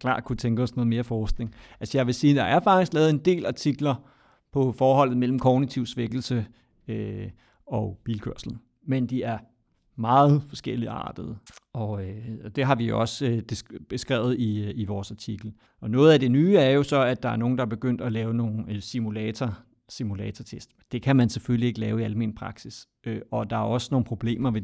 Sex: male